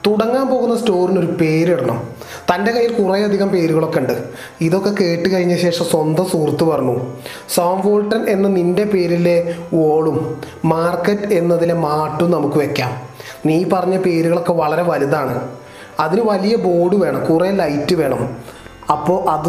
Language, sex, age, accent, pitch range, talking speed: Malayalam, male, 30-49, native, 150-180 Hz, 125 wpm